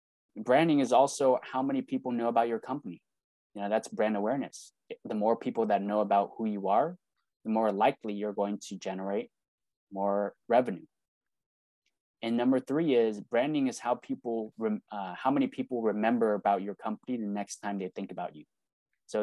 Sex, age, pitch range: male, 20-39, 100-120 Hz